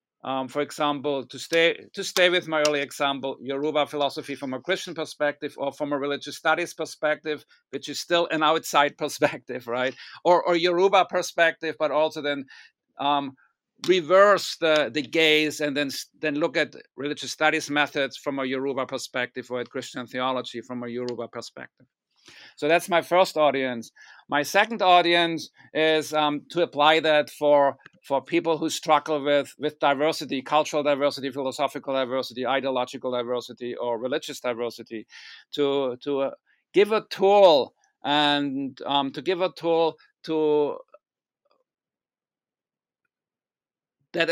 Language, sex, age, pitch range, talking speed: English, male, 50-69, 135-165 Hz, 145 wpm